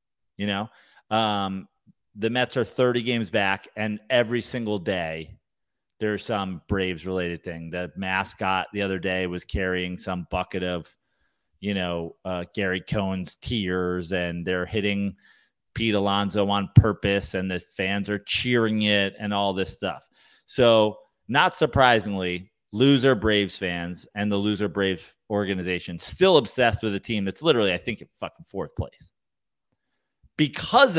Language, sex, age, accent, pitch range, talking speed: English, male, 30-49, American, 95-115 Hz, 145 wpm